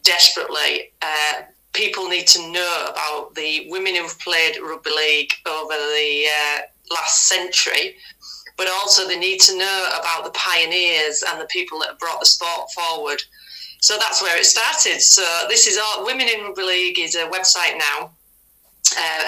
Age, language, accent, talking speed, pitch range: 40-59, English, British, 170 wpm, 160-210 Hz